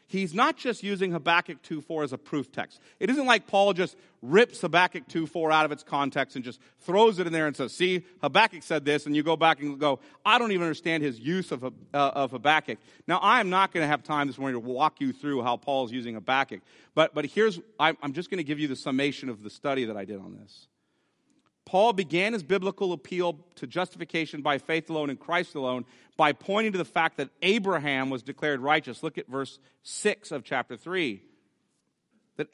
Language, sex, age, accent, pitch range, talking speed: English, male, 40-59, American, 145-195 Hz, 220 wpm